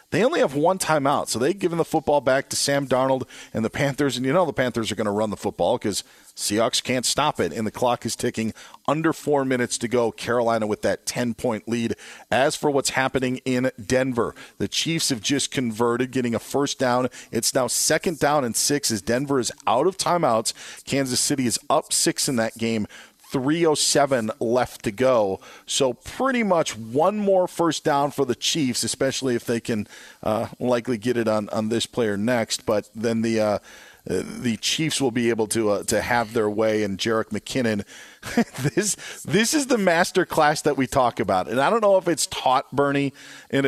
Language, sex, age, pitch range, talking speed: English, male, 40-59, 115-150 Hz, 205 wpm